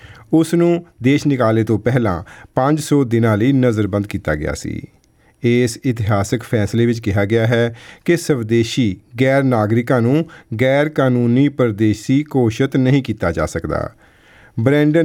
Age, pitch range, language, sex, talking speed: 40-59, 110-140 Hz, English, male, 115 wpm